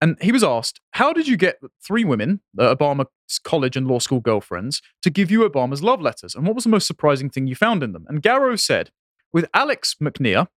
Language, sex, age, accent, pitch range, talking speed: English, male, 30-49, British, 125-195 Hz, 225 wpm